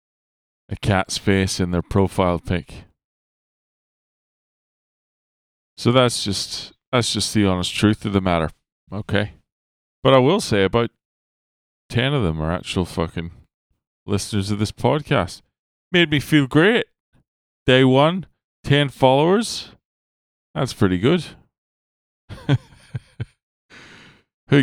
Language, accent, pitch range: English, American, 85-120 Hz